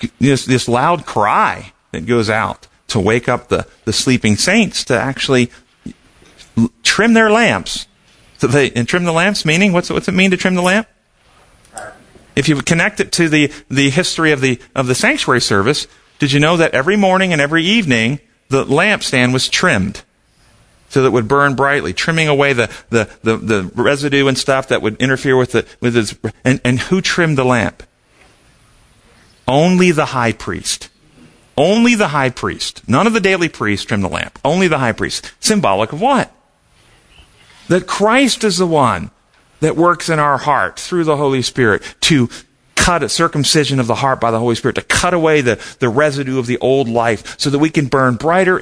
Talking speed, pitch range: 190 wpm, 125-170 Hz